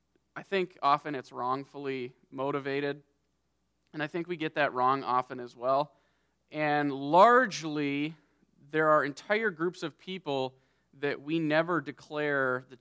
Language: English